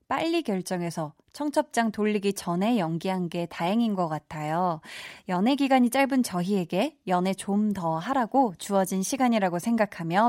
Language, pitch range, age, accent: Korean, 180-265 Hz, 20-39, native